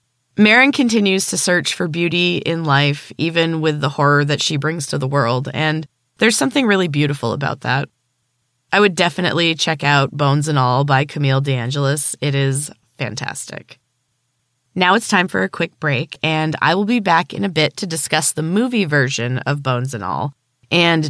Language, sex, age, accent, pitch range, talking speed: English, female, 20-39, American, 130-170 Hz, 180 wpm